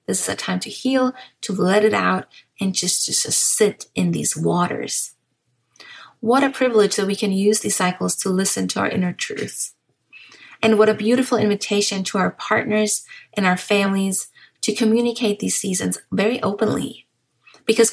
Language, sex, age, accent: English, female, 30-49, American